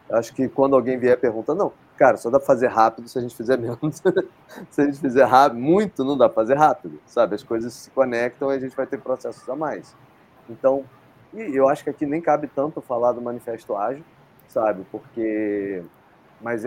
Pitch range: 110-135 Hz